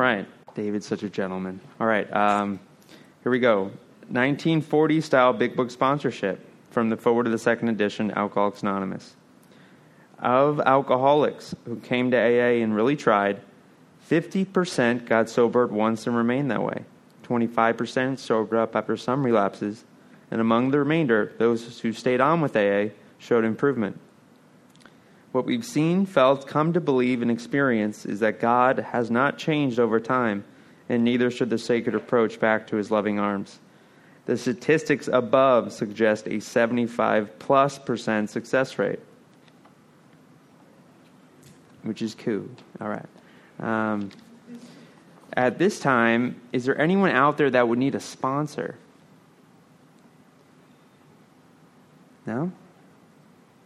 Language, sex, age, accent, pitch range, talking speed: English, male, 30-49, American, 110-135 Hz, 135 wpm